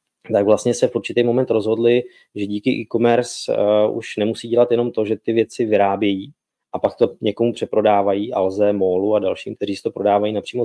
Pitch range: 100-115 Hz